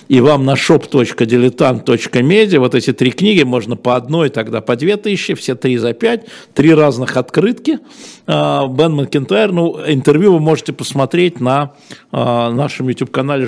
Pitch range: 125-160 Hz